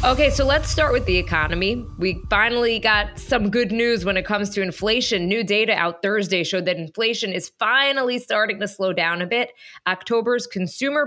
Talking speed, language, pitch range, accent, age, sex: 190 wpm, English, 175-230 Hz, American, 20-39, female